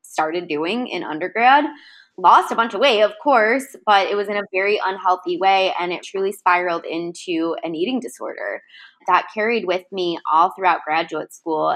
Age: 20-39